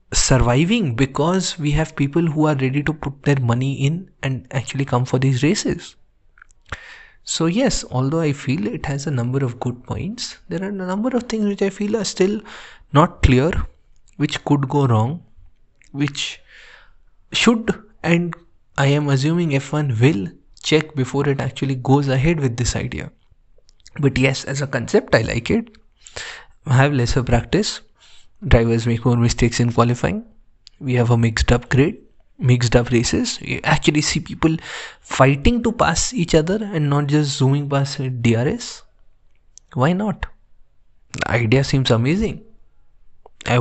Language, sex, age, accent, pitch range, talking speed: English, male, 20-39, Indian, 120-155 Hz, 155 wpm